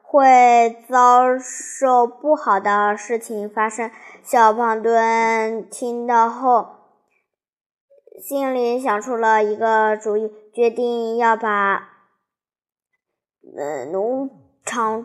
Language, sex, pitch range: Chinese, male, 215-255 Hz